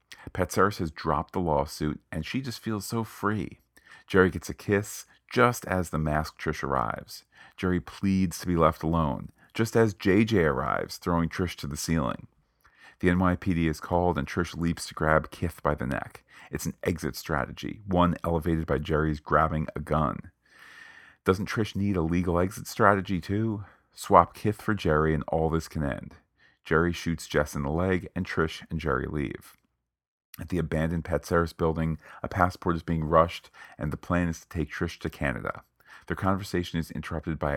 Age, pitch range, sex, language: 40-59, 80-90 Hz, male, English